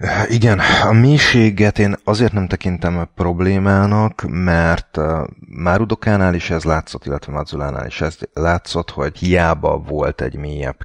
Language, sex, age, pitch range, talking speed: Hungarian, male, 30-49, 80-100 Hz, 125 wpm